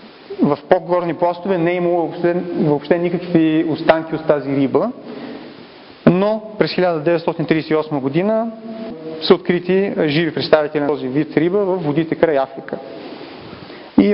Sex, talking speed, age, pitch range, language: male, 125 wpm, 30-49, 150-190 Hz, Bulgarian